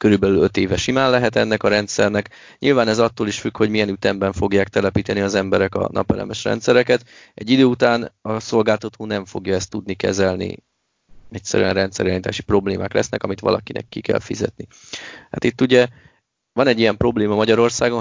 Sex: male